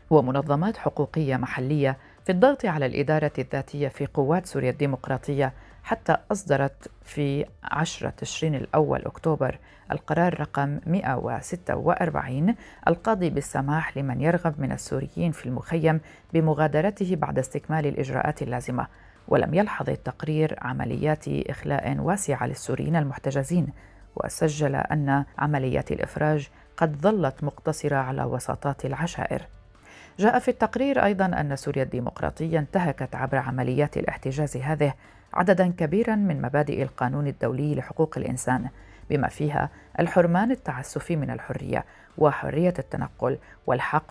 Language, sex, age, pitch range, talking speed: Arabic, female, 40-59, 135-165 Hz, 110 wpm